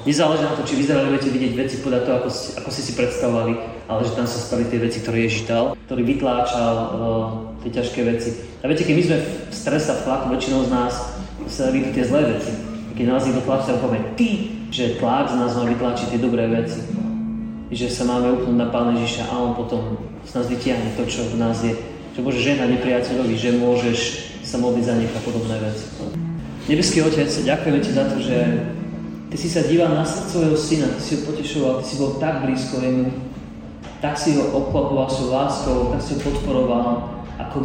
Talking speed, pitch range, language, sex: 195 wpm, 120-150 Hz, Slovak, male